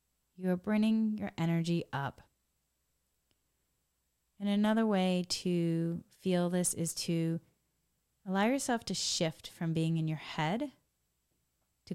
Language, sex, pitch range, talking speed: English, female, 155-195 Hz, 115 wpm